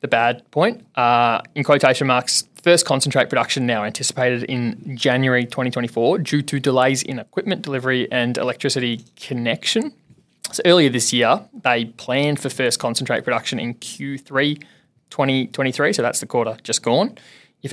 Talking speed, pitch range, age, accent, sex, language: 150 wpm, 115-145 Hz, 20-39, Australian, male, English